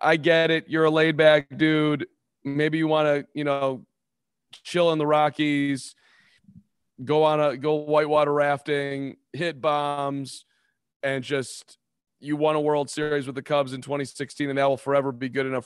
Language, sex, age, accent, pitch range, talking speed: English, male, 30-49, American, 130-155 Hz, 175 wpm